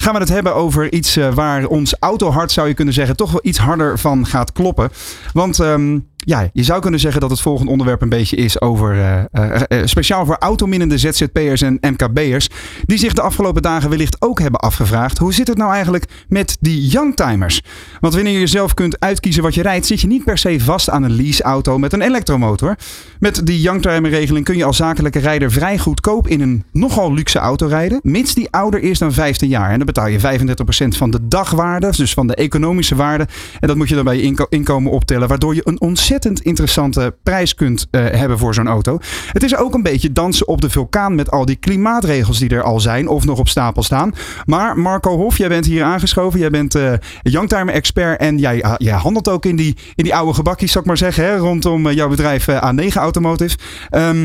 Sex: male